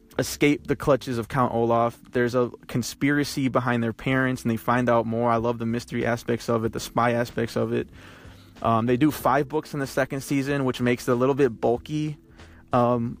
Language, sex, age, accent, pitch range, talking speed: English, male, 20-39, American, 115-125 Hz, 210 wpm